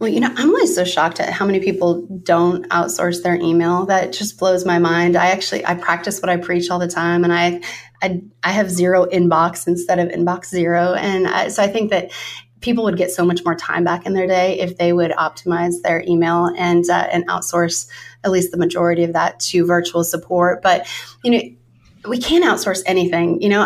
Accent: American